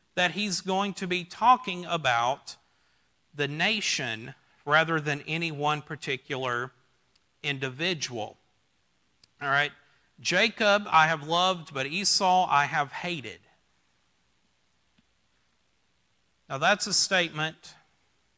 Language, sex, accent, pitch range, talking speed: English, male, American, 120-170 Hz, 100 wpm